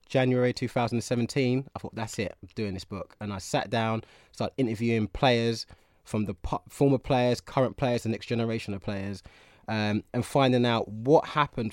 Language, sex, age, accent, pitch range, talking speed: English, male, 20-39, British, 110-140 Hz, 175 wpm